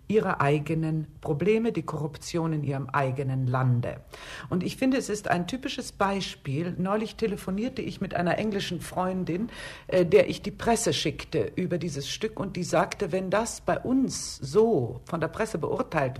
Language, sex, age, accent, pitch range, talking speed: German, female, 60-79, German, 145-195 Hz, 165 wpm